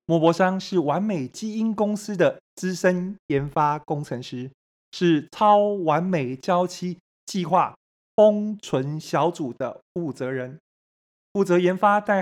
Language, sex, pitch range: Chinese, male, 140-190 Hz